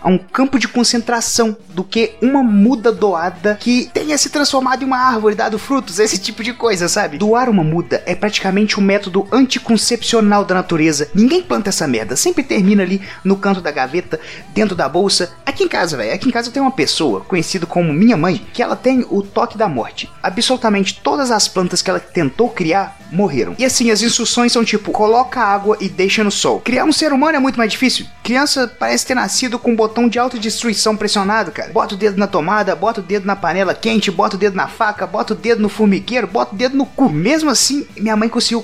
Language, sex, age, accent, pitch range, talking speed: English, male, 30-49, Brazilian, 195-245 Hz, 215 wpm